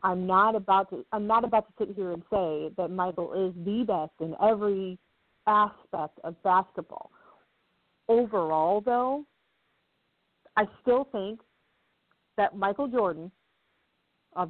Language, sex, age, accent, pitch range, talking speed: English, female, 40-59, American, 175-265 Hz, 130 wpm